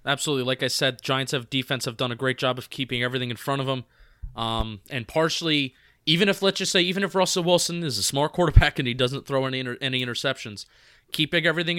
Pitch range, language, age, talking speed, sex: 120-140 Hz, English, 20-39, 230 wpm, male